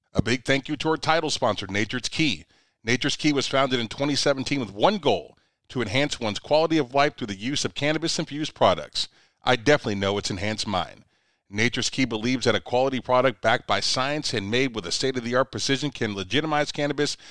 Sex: male